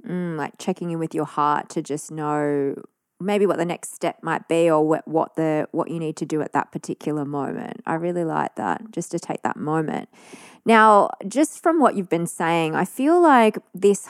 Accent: Australian